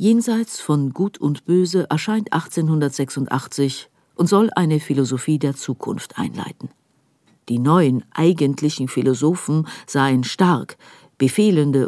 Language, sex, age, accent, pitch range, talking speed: German, female, 50-69, German, 145-200 Hz, 105 wpm